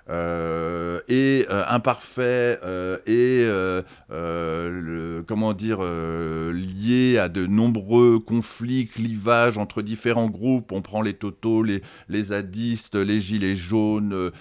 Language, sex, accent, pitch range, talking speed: French, male, French, 90-120 Hz, 130 wpm